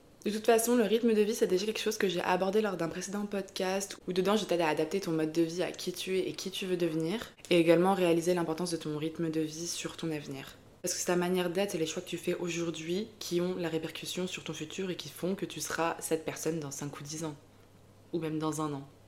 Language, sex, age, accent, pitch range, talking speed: French, female, 20-39, French, 160-190 Hz, 275 wpm